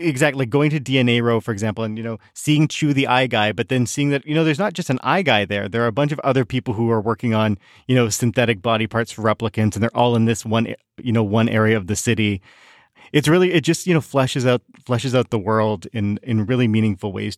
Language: English